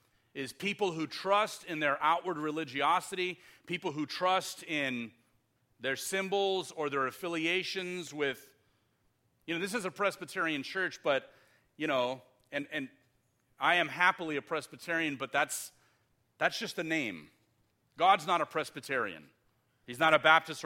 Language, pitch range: English, 120-165 Hz